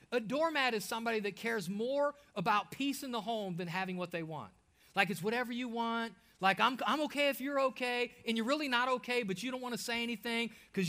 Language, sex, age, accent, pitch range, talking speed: English, male, 30-49, American, 215-260 Hz, 230 wpm